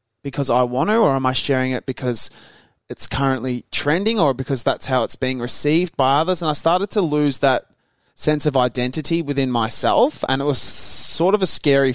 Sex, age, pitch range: male, 20-39, 120-140 Hz